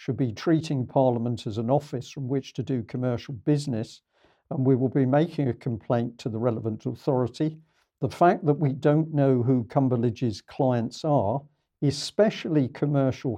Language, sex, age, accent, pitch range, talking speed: English, male, 50-69, British, 120-145 Hz, 160 wpm